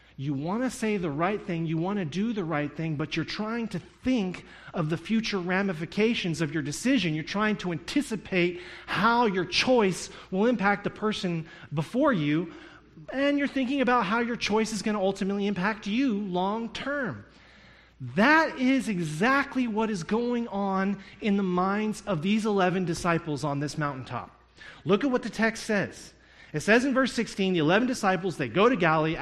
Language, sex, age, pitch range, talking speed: English, male, 30-49, 165-225 Hz, 185 wpm